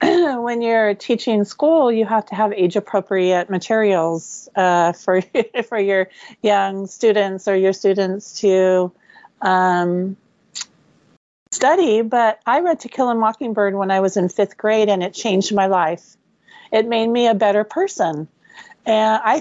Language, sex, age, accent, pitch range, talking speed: English, female, 40-59, American, 185-230 Hz, 150 wpm